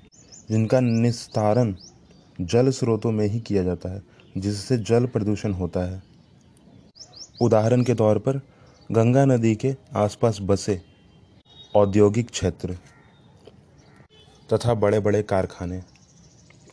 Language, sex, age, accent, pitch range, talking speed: Hindi, male, 30-49, native, 95-115 Hz, 105 wpm